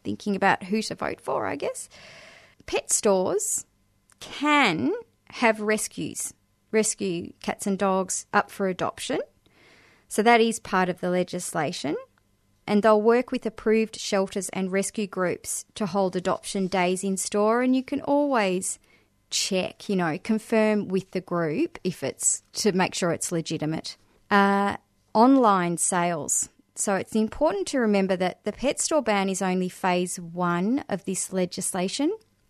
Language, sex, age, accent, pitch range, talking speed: English, female, 30-49, Australian, 180-220 Hz, 150 wpm